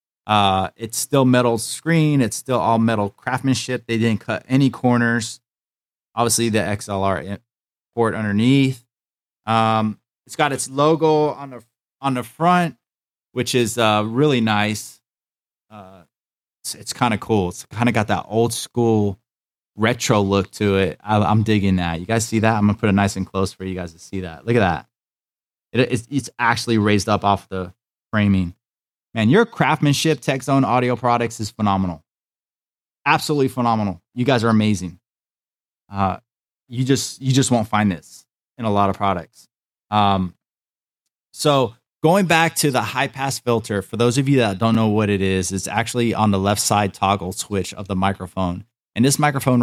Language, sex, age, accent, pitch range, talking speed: English, male, 20-39, American, 100-125 Hz, 175 wpm